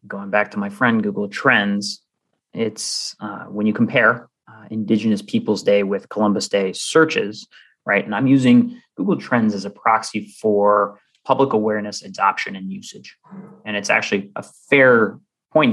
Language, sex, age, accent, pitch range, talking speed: English, male, 20-39, American, 100-125 Hz, 155 wpm